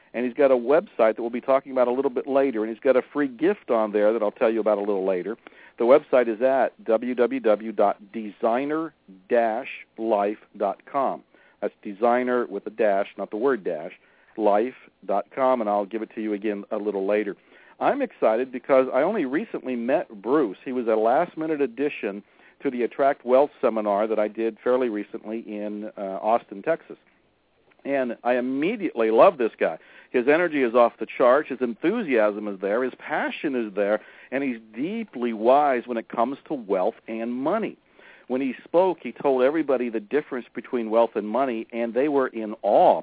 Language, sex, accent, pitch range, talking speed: English, male, American, 110-135 Hz, 180 wpm